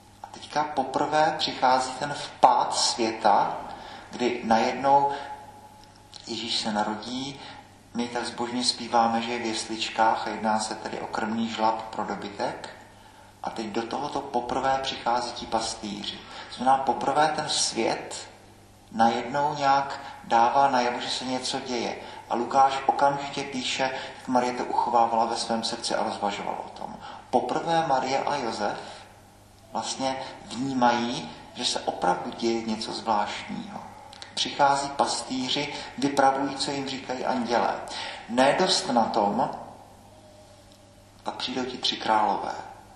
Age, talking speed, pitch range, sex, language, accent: 40-59, 130 wpm, 110-135 Hz, male, Czech, native